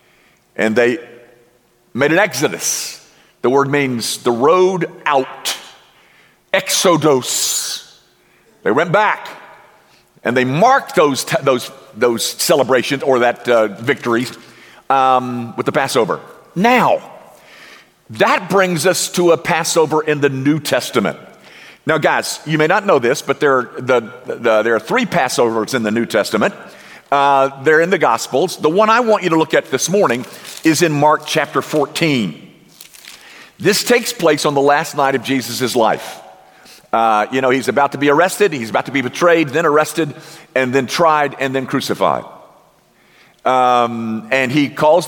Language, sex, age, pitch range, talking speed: English, male, 50-69, 130-170 Hz, 155 wpm